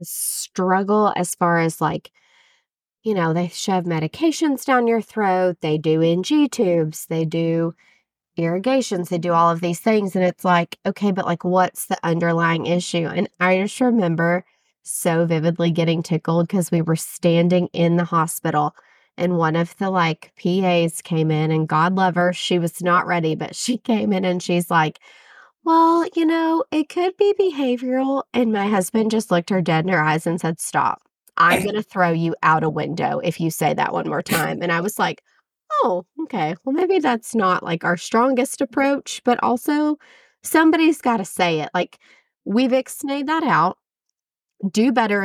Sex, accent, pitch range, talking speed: female, American, 170-235 Hz, 180 wpm